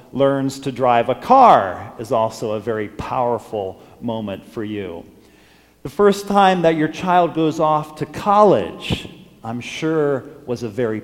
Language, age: English, 40-59